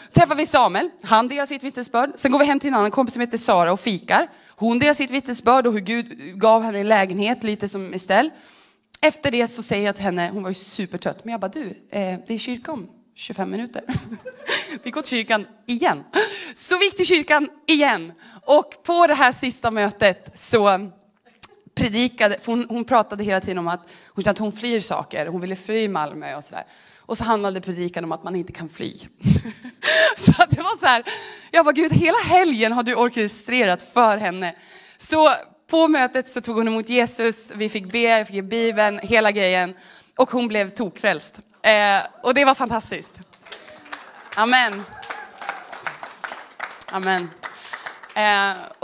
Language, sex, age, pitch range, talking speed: Swedish, female, 30-49, 195-255 Hz, 180 wpm